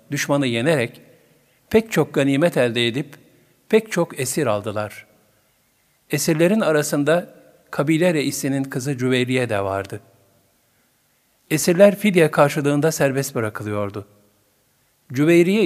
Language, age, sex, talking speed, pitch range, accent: Turkish, 50-69, male, 95 wpm, 120-165 Hz, native